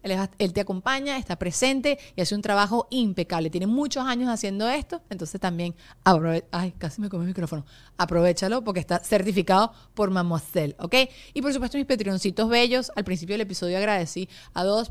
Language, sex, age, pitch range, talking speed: Spanish, female, 30-49, 180-245 Hz, 175 wpm